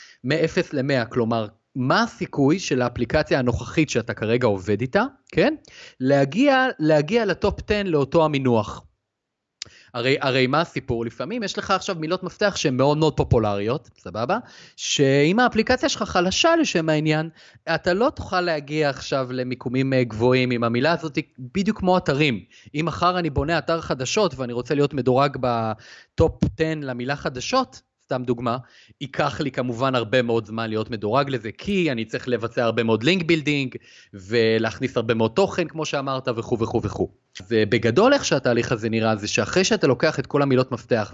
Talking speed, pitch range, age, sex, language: 155 wpm, 120-175 Hz, 30-49, male, Hebrew